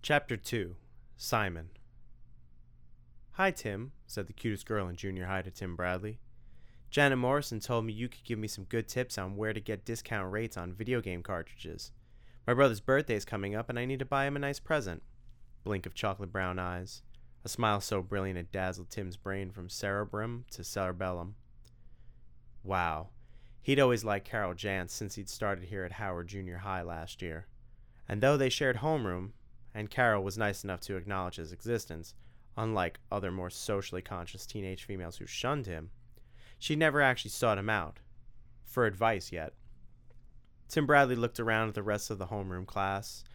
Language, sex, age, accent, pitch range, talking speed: English, male, 30-49, American, 95-120 Hz, 175 wpm